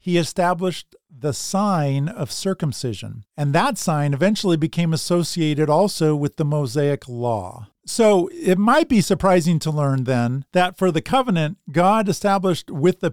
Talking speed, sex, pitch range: 150 wpm, male, 140-185 Hz